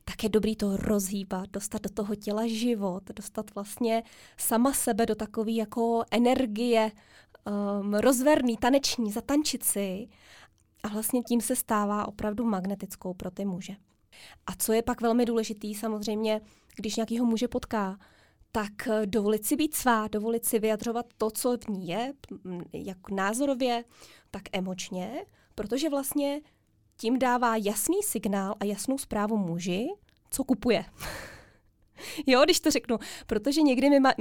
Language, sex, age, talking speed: Czech, female, 20-39, 140 wpm